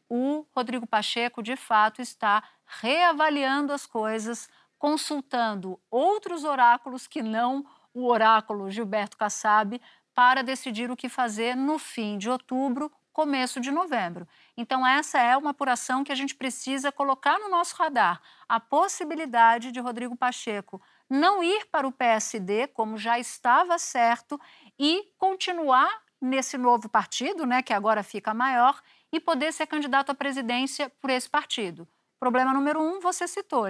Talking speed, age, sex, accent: 145 wpm, 50-69, female, Brazilian